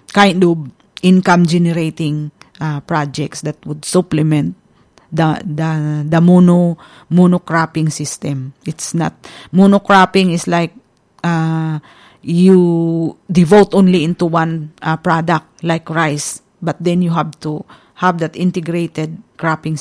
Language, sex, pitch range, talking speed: English, female, 160-185 Hz, 115 wpm